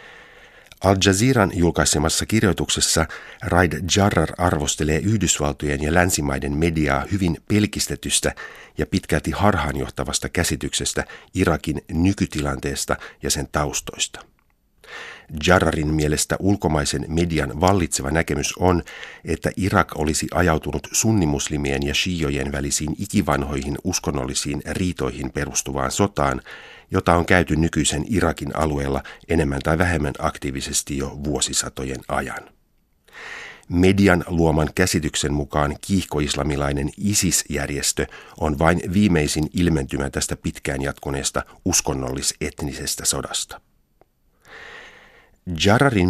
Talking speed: 90 wpm